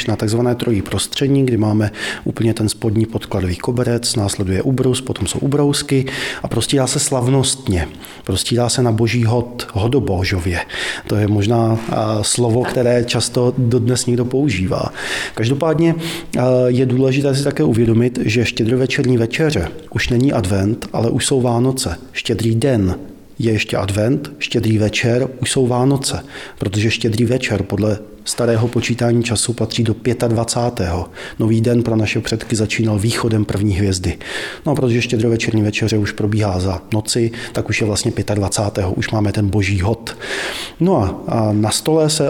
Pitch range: 105-130 Hz